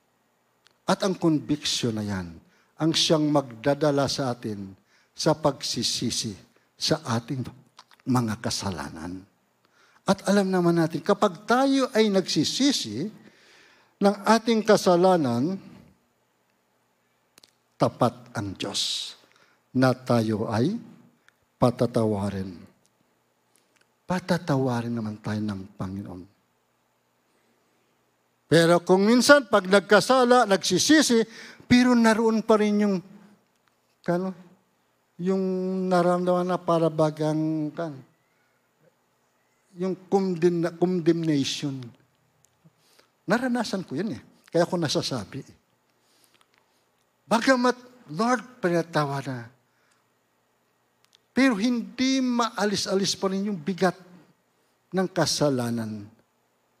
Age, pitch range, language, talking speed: 50-69, 120-195 Hz, Filipino, 80 wpm